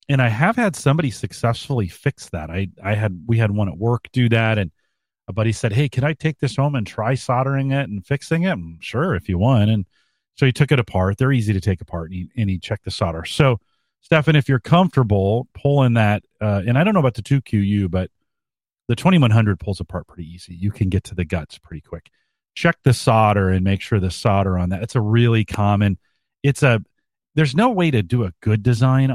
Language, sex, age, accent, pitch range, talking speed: English, male, 40-59, American, 95-130 Hz, 225 wpm